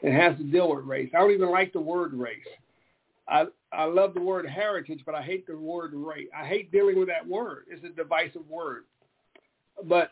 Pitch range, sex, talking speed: 160-205 Hz, male, 215 wpm